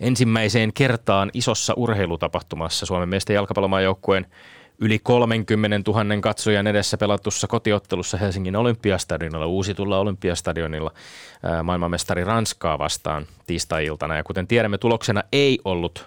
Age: 20-39